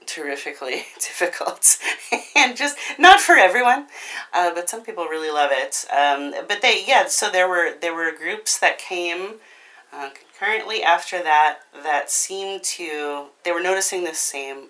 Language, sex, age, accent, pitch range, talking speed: English, female, 30-49, American, 155-210 Hz, 155 wpm